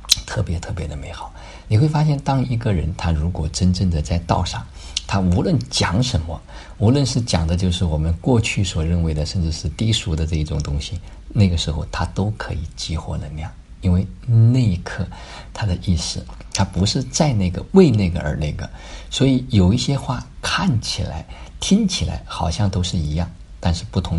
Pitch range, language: 75-95 Hz, Chinese